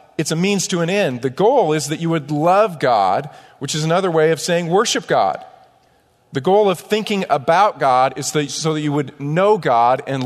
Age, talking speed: 40-59, 210 wpm